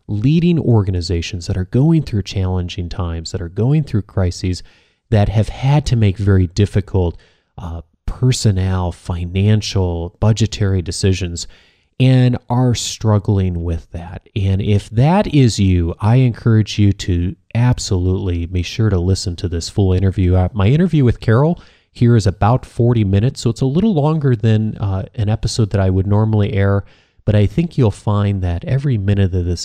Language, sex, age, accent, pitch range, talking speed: English, male, 30-49, American, 90-110 Hz, 165 wpm